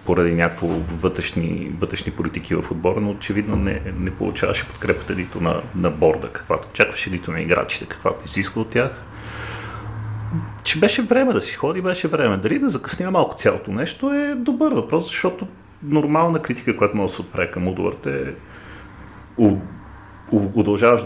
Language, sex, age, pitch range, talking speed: Bulgarian, male, 40-59, 90-120 Hz, 155 wpm